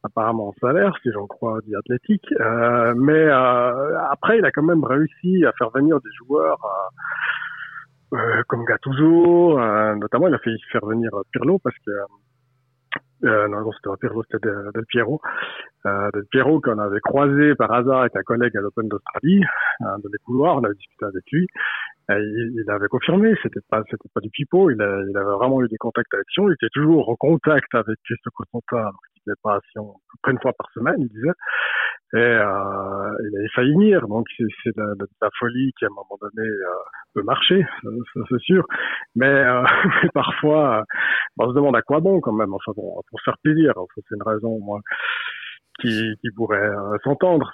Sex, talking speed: male, 200 wpm